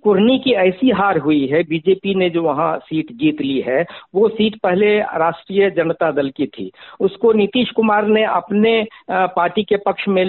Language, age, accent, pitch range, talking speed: Hindi, 60-79, native, 165-220 Hz, 180 wpm